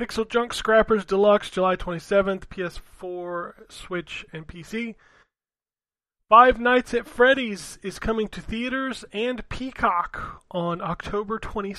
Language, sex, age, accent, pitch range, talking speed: English, male, 30-49, American, 175-210 Hz, 110 wpm